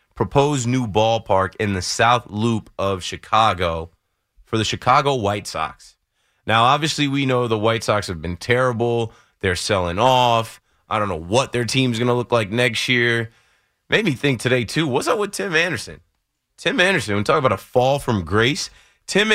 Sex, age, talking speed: male, 30-49, 185 wpm